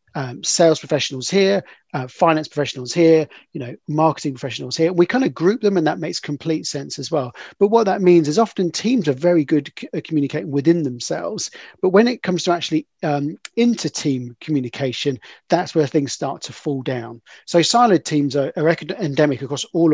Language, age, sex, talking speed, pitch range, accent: English, 40-59, male, 190 wpm, 145-175 Hz, British